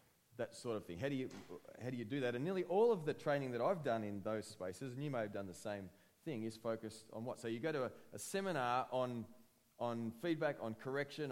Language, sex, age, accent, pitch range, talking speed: English, male, 30-49, Australian, 115-155 Hz, 255 wpm